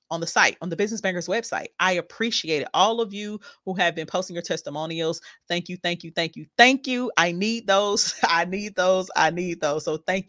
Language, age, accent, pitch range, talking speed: English, 30-49, American, 170-220 Hz, 225 wpm